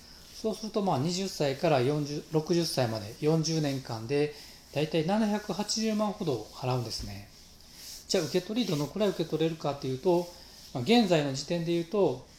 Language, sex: Japanese, male